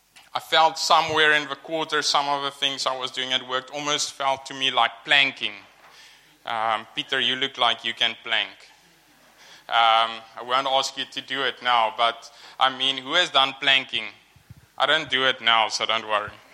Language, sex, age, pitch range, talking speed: English, male, 20-39, 125-150 Hz, 190 wpm